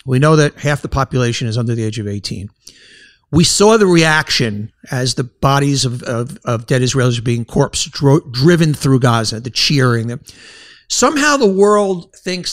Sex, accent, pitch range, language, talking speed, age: male, American, 140-205 Hz, English, 175 wpm, 50-69